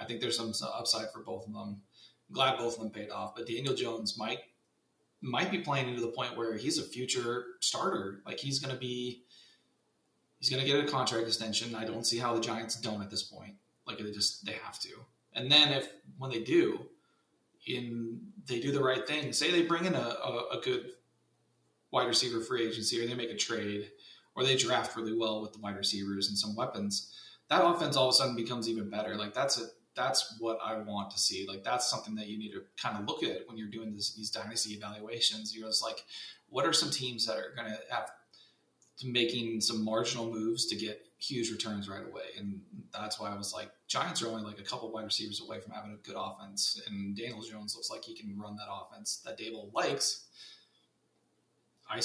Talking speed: 220 wpm